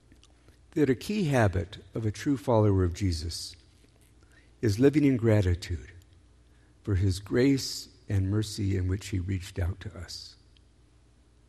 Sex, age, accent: male, 60-79, American